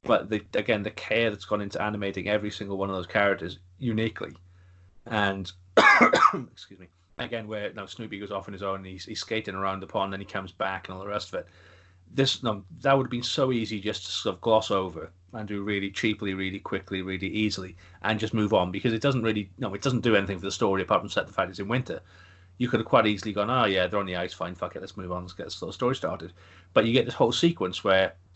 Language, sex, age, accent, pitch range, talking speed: English, male, 30-49, British, 95-110 Hz, 260 wpm